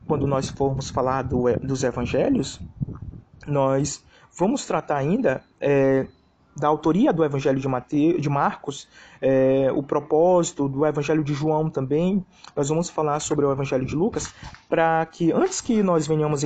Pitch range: 140-175 Hz